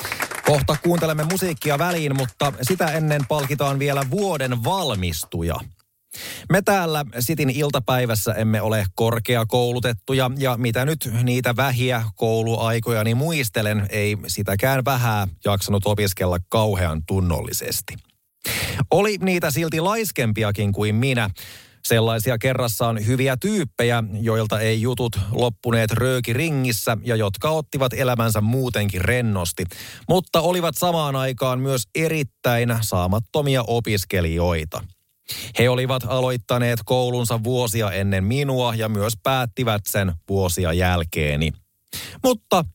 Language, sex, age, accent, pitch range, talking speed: Finnish, male, 30-49, native, 105-140 Hz, 105 wpm